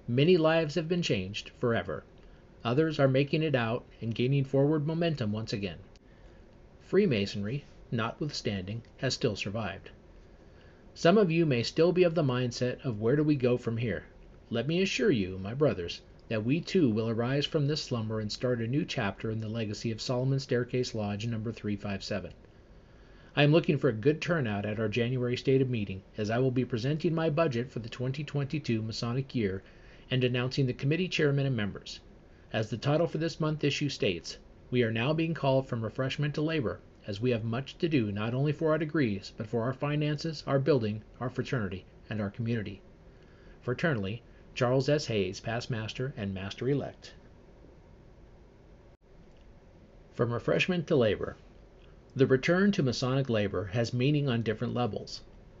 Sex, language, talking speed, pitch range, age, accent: male, English, 175 wpm, 110-145 Hz, 40-59, American